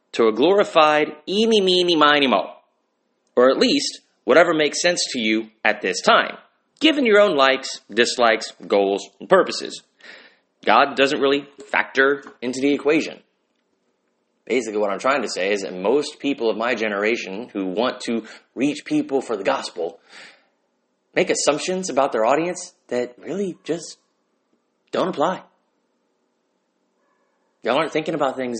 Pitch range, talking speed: 120-170 Hz, 145 wpm